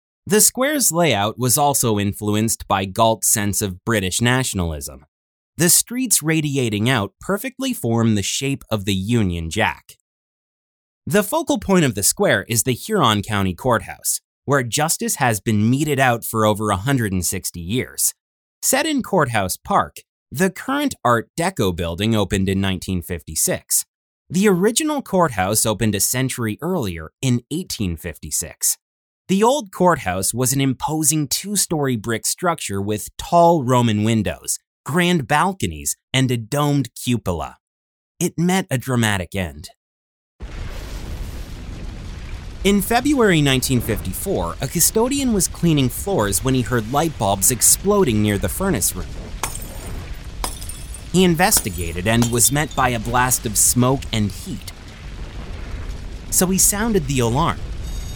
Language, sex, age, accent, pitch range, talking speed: English, male, 30-49, American, 95-155 Hz, 130 wpm